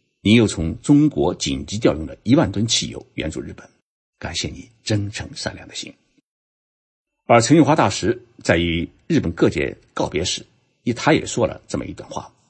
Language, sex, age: Chinese, male, 60-79